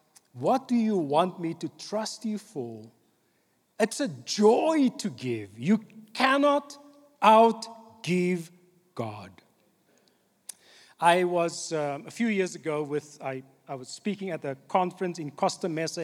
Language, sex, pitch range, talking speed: English, male, 145-200 Hz, 135 wpm